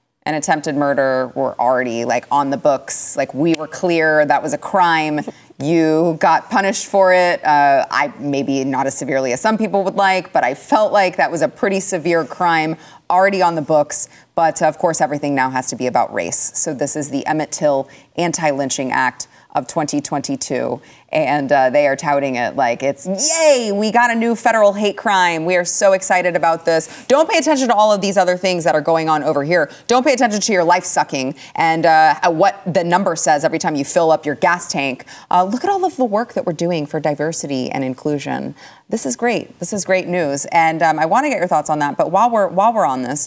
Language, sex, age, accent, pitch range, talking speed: English, female, 30-49, American, 145-190 Hz, 225 wpm